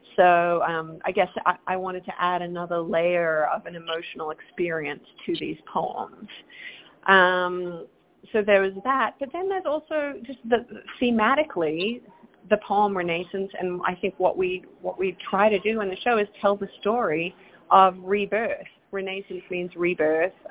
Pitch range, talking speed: 175-210 Hz, 165 wpm